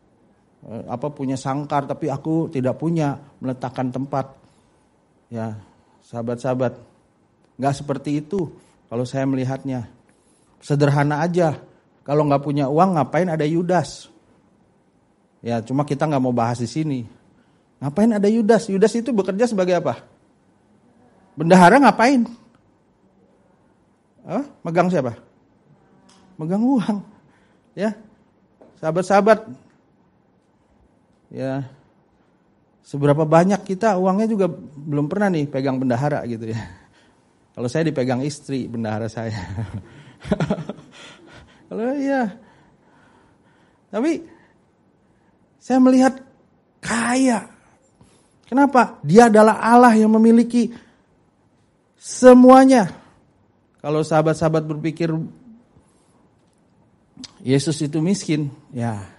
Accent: native